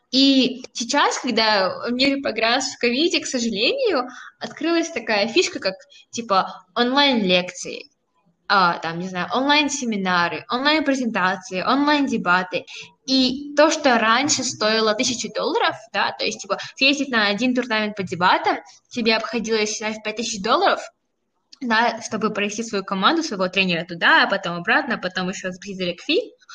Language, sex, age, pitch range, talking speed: Russian, female, 10-29, 200-260 Hz, 140 wpm